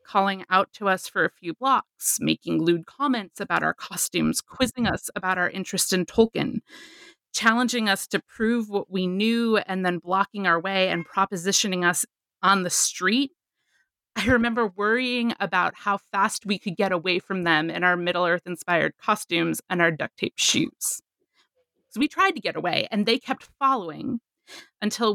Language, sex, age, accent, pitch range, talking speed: English, female, 30-49, American, 180-230 Hz, 170 wpm